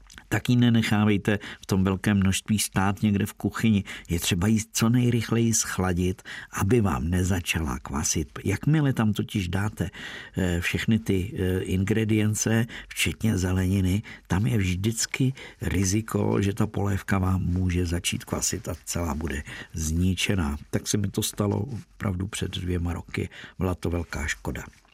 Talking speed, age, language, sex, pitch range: 140 wpm, 50-69, Czech, male, 95-110 Hz